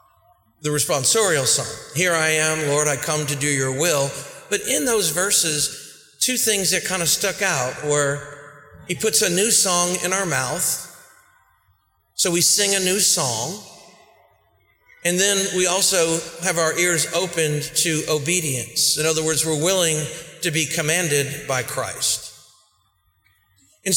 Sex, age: male, 40-59